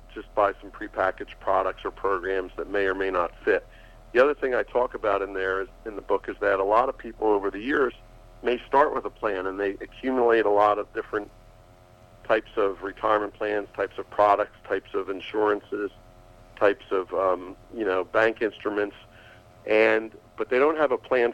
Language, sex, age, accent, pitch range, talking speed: English, male, 50-69, American, 100-120 Hz, 195 wpm